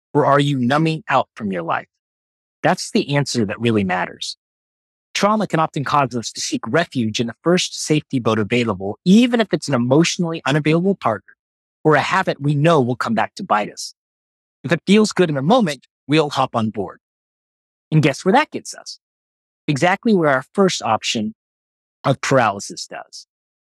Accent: American